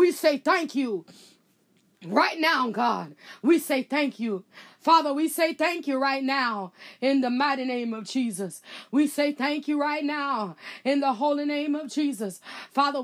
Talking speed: 170 wpm